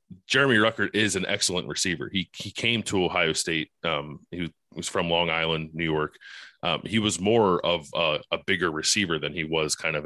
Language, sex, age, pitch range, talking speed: English, male, 30-49, 80-95 Hz, 205 wpm